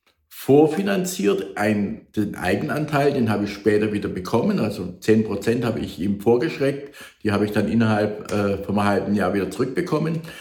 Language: German